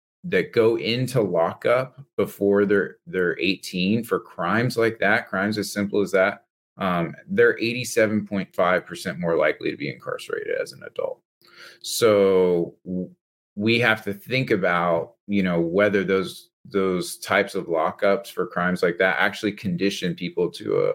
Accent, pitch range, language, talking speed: American, 90-120 Hz, English, 145 wpm